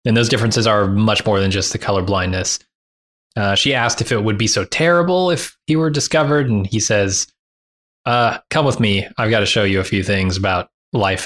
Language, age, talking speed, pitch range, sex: English, 20-39, 220 wpm, 100-130 Hz, male